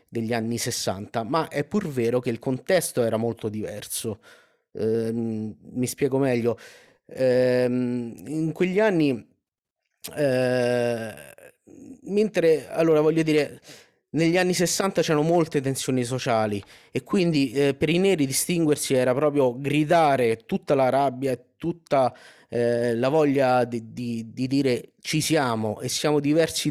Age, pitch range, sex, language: 30-49, 120-155 Hz, male, Italian